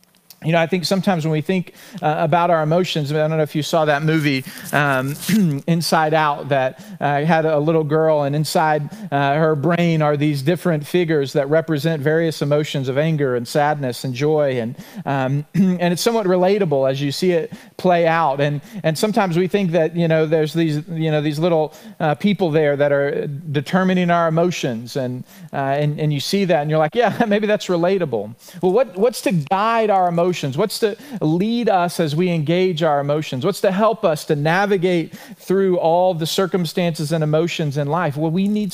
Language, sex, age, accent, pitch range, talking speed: English, male, 40-59, American, 150-185 Hz, 205 wpm